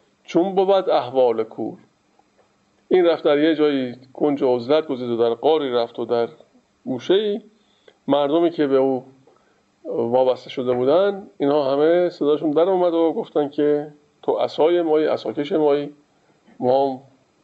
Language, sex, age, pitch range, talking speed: Persian, male, 50-69, 125-160 Hz, 150 wpm